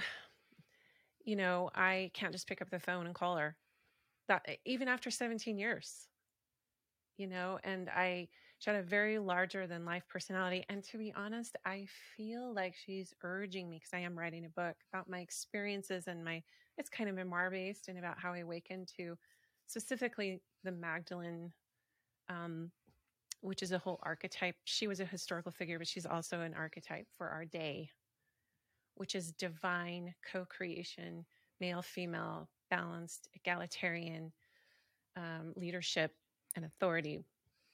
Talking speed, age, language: 150 wpm, 30-49, English